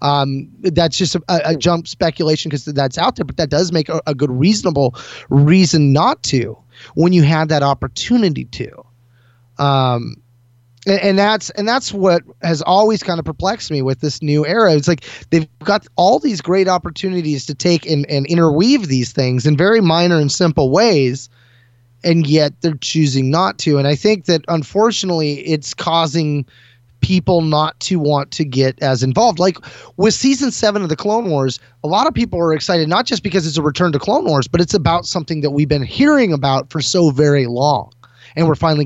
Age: 20-39